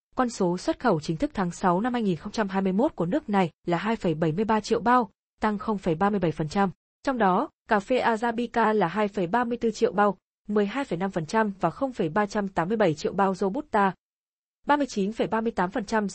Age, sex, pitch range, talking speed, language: 20-39, female, 185-230 Hz, 130 wpm, Vietnamese